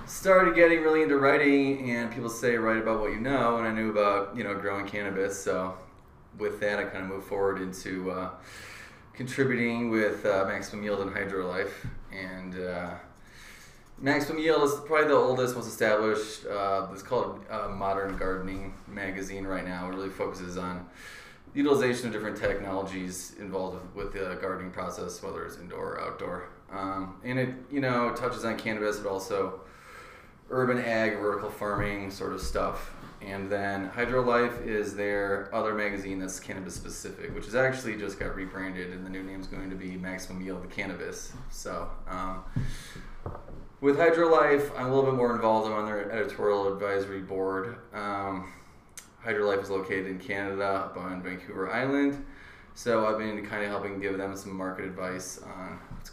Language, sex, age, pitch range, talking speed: English, male, 20-39, 95-115 Hz, 175 wpm